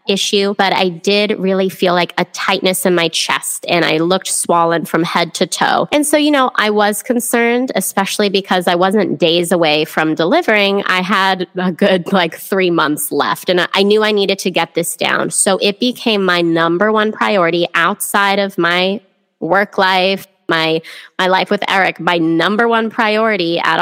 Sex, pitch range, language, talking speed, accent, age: female, 175-205 Hz, English, 185 wpm, American, 20-39